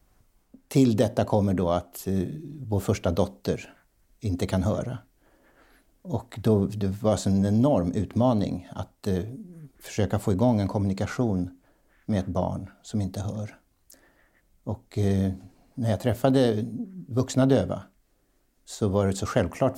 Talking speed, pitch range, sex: 120 wpm, 95-125 Hz, male